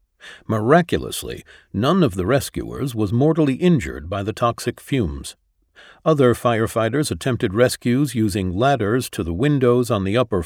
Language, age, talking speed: English, 50-69, 140 wpm